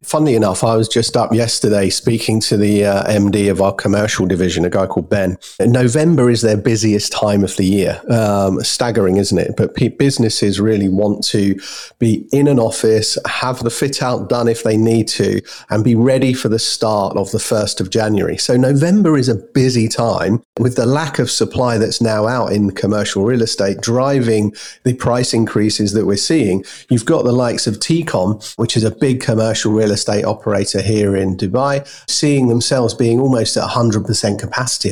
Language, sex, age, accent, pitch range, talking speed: English, male, 40-59, British, 105-120 Hz, 190 wpm